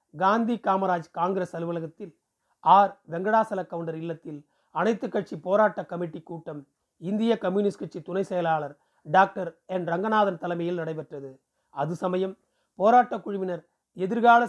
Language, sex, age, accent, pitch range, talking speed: Tamil, male, 40-59, native, 175-210 Hz, 115 wpm